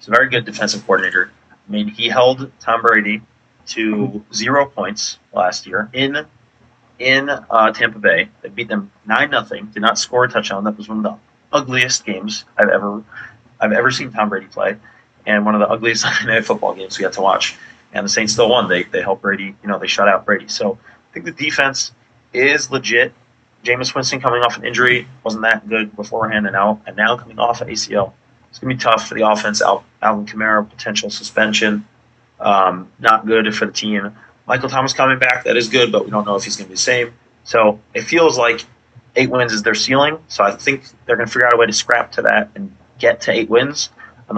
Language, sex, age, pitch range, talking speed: English, male, 30-49, 105-125 Hz, 215 wpm